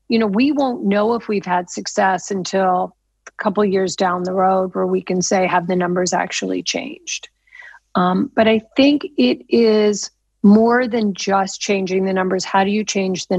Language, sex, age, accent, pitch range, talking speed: English, female, 40-59, American, 190-235 Hz, 195 wpm